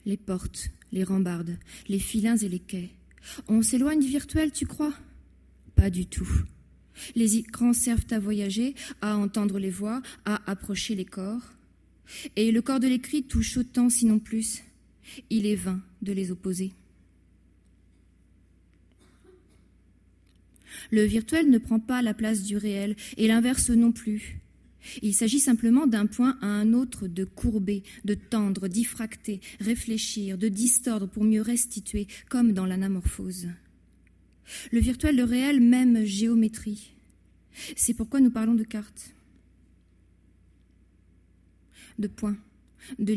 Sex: female